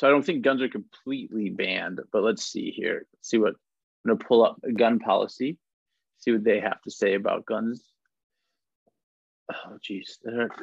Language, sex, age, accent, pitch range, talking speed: English, male, 30-49, American, 110-135 Hz, 180 wpm